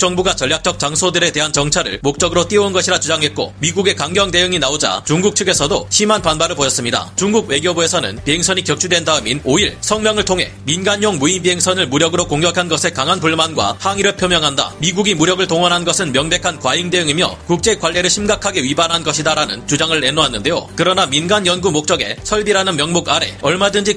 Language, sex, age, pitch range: Korean, male, 30-49, 155-195 Hz